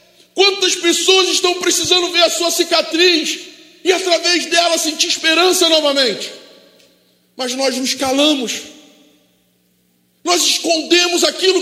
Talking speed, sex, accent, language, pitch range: 110 wpm, male, Brazilian, Portuguese, 260-340 Hz